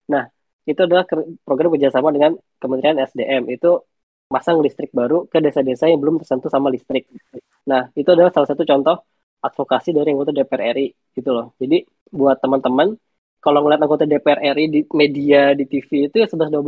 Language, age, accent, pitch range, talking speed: Indonesian, 20-39, native, 130-150 Hz, 175 wpm